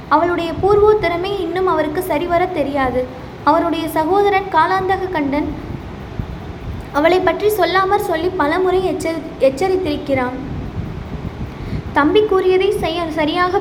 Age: 20-39